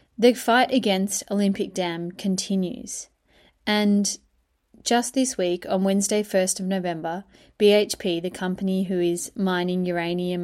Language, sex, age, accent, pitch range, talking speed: English, female, 20-39, Australian, 175-210 Hz, 125 wpm